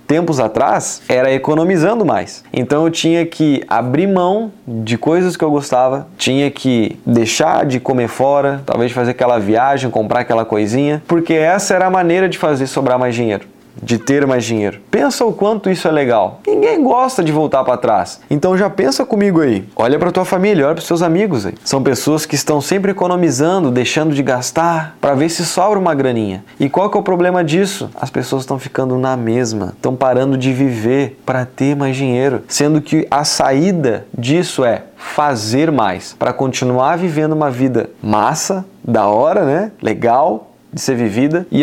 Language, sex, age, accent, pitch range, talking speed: Portuguese, male, 20-39, Brazilian, 125-170 Hz, 185 wpm